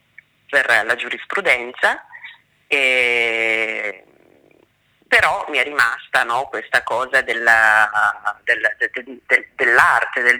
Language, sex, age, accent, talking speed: Italian, female, 30-49, native, 70 wpm